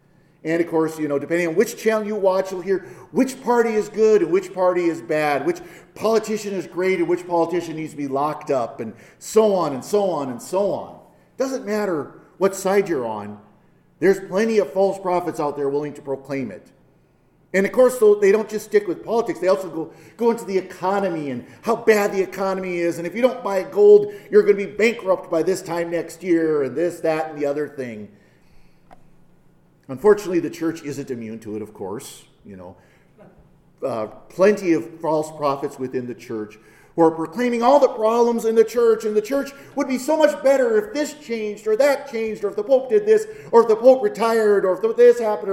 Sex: male